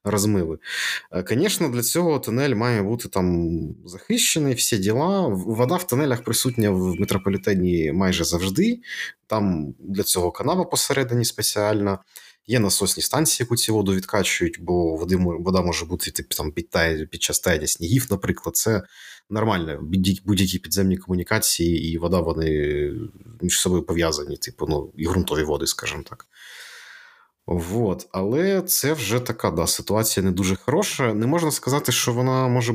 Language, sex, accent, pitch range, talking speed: Ukrainian, male, native, 90-120 Hz, 145 wpm